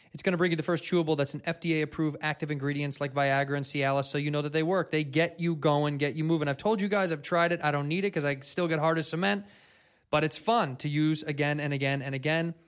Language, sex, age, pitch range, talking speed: English, male, 20-39, 150-170 Hz, 275 wpm